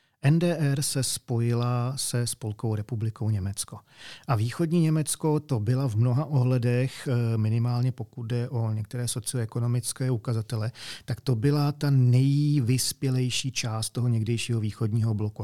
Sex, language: male, Czech